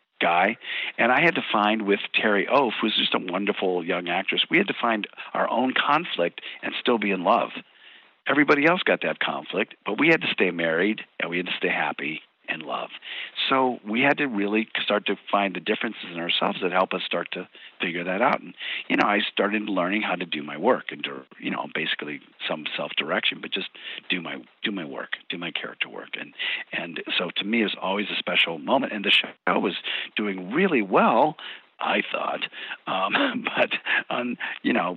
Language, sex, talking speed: English, male, 205 wpm